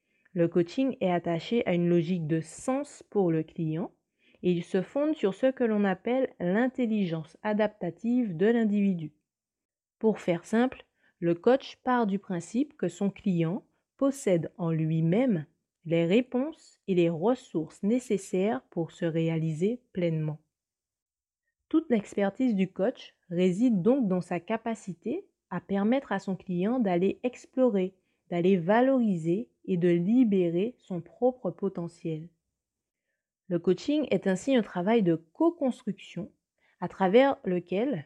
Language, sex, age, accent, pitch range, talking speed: French, female, 30-49, French, 175-245 Hz, 130 wpm